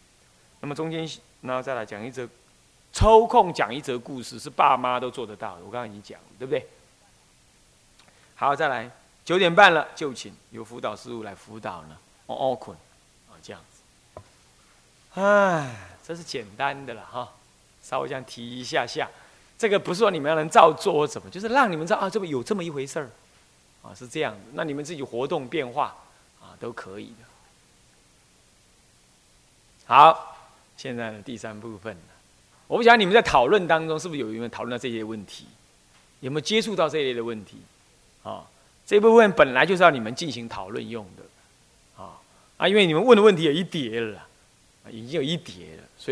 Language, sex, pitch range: Chinese, male, 115-175 Hz